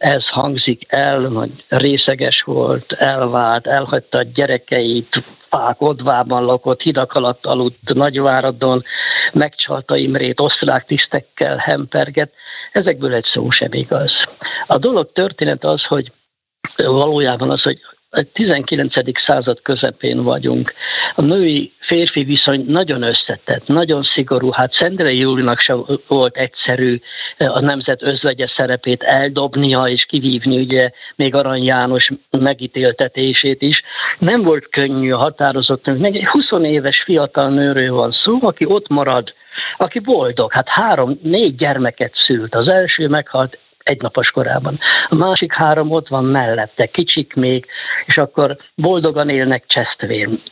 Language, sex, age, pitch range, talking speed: Hungarian, male, 60-79, 125-150 Hz, 125 wpm